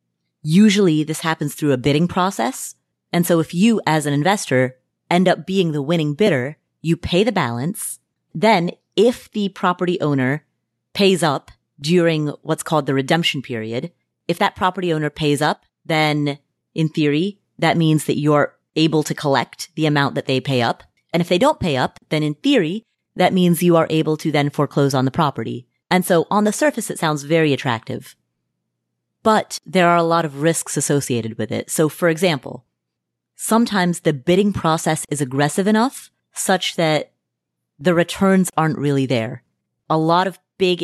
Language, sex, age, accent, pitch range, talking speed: English, female, 30-49, American, 145-180 Hz, 175 wpm